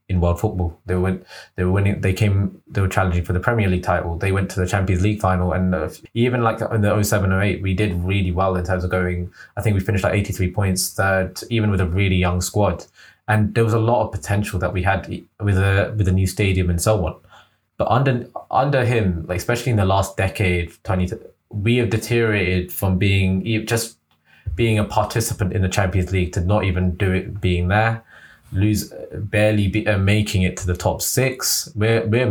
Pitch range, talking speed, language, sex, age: 90-110 Hz, 215 wpm, English, male, 20-39